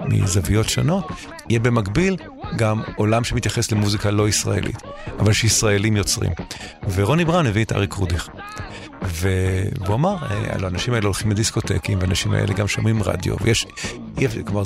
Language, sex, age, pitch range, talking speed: Hebrew, male, 50-69, 100-120 Hz, 140 wpm